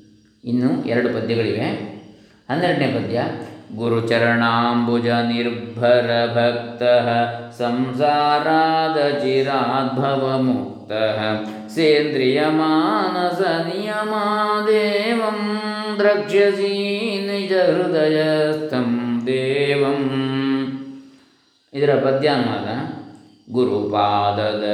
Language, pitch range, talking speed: Kannada, 120-160 Hz, 40 wpm